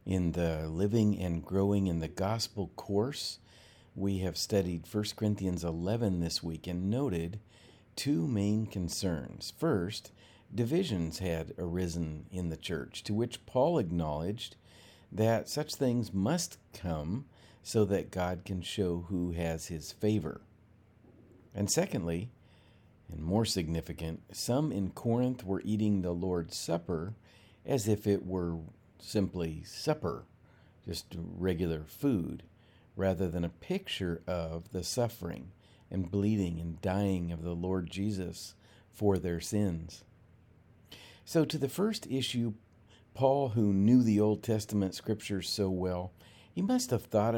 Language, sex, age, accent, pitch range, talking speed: English, male, 50-69, American, 90-110 Hz, 135 wpm